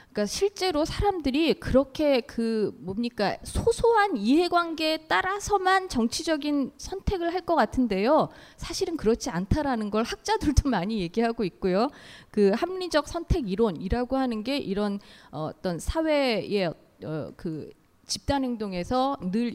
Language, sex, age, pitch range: Korean, female, 20-39, 210-320 Hz